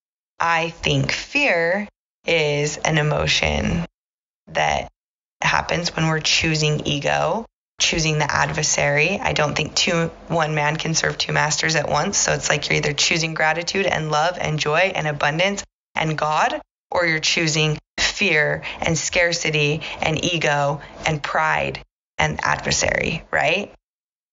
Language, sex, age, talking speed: English, female, 20-39, 135 wpm